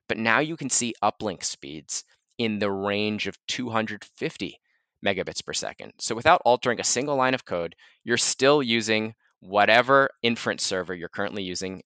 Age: 20-39